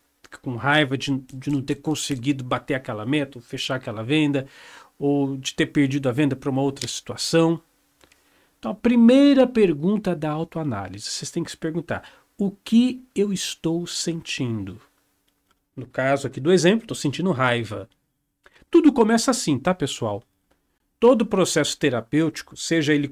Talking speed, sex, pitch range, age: 150 wpm, male, 135-200 Hz, 50-69